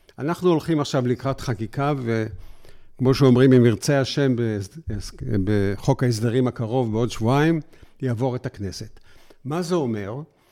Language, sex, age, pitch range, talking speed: Hebrew, male, 50-69, 120-155 Hz, 125 wpm